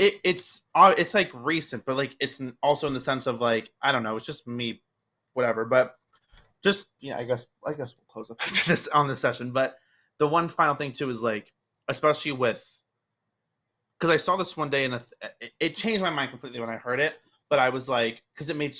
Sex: male